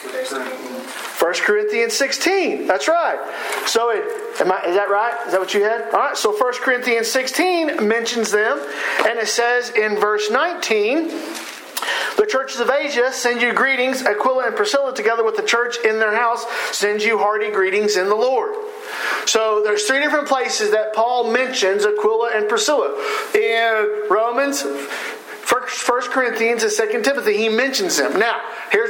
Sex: male